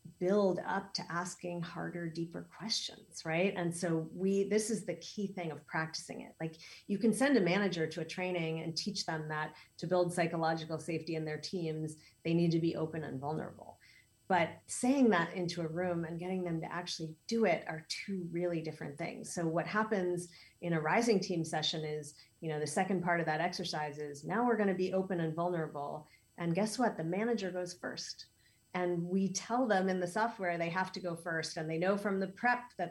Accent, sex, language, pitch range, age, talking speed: American, female, English, 160-190 Hz, 40-59, 210 wpm